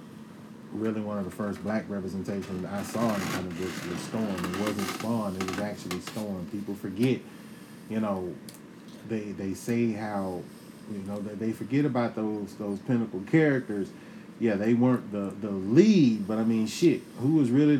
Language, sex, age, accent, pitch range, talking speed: English, male, 30-49, American, 105-150 Hz, 180 wpm